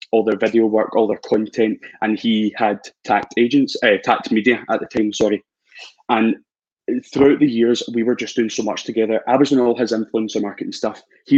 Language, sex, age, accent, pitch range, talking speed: English, male, 20-39, British, 105-115 Hz, 205 wpm